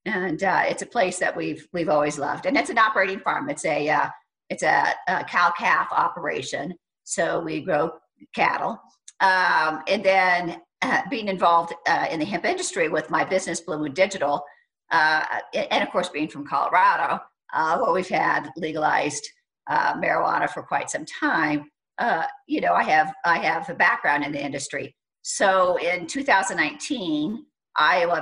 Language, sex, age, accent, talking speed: English, female, 50-69, American, 165 wpm